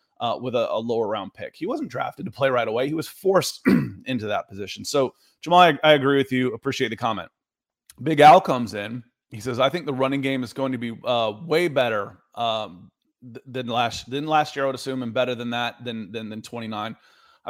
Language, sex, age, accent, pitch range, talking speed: English, male, 30-49, American, 115-135 Hz, 225 wpm